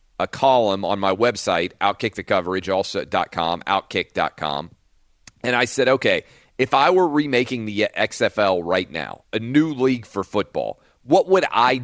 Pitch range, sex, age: 100-130 Hz, male, 40-59